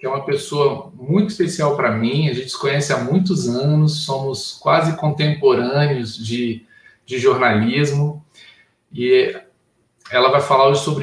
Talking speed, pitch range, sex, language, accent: 145 wpm, 135-175 Hz, male, Portuguese, Brazilian